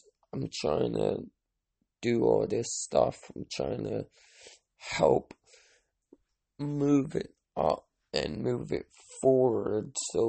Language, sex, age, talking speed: English, male, 20-39, 110 wpm